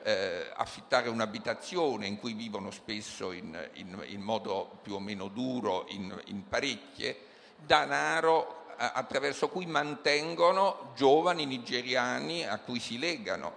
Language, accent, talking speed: Italian, native, 120 wpm